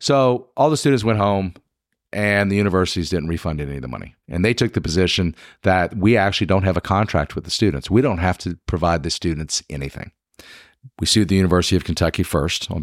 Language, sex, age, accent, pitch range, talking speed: English, male, 50-69, American, 85-105 Hz, 215 wpm